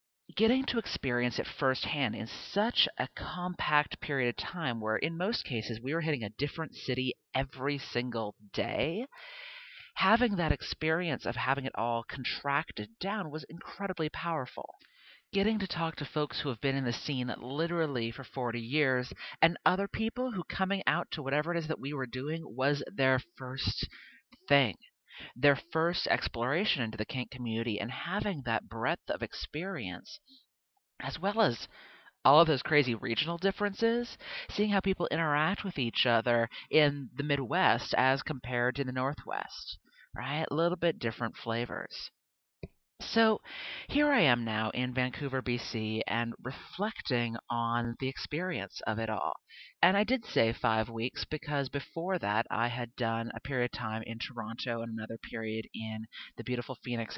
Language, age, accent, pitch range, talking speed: English, 40-59, American, 120-170 Hz, 160 wpm